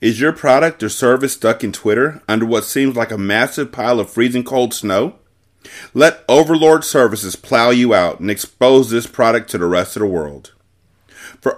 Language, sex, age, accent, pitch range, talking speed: English, male, 30-49, American, 95-125 Hz, 185 wpm